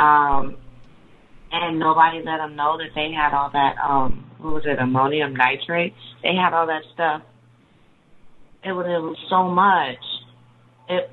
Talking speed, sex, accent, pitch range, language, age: 155 wpm, female, American, 120-145 Hz, English, 30-49